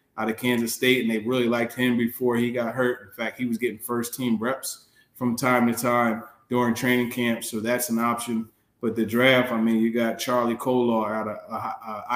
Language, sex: English, male